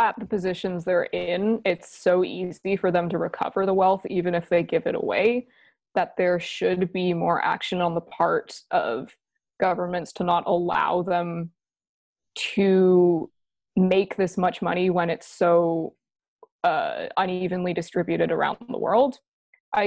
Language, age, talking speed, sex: English, 20-39, 150 wpm, female